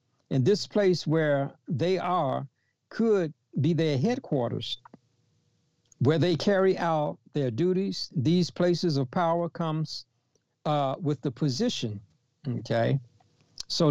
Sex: male